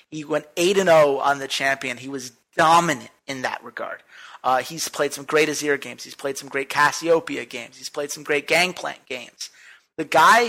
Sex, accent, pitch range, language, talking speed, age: male, American, 145-195 Hz, English, 195 wpm, 30-49